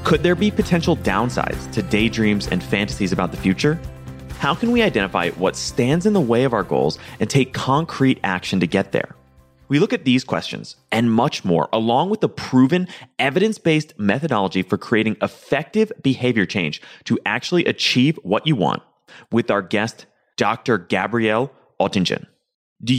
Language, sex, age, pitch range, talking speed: English, male, 30-49, 105-155 Hz, 165 wpm